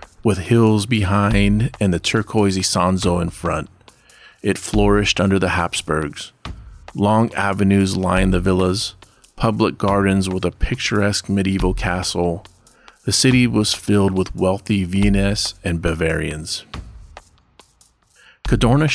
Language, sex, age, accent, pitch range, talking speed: English, male, 40-59, American, 90-110 Hz, 115 wpm